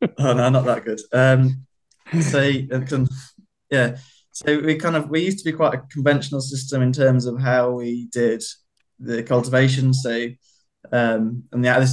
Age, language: 20-39, English